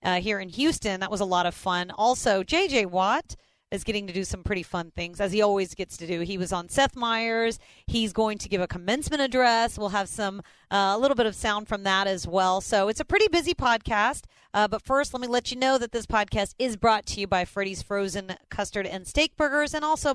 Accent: American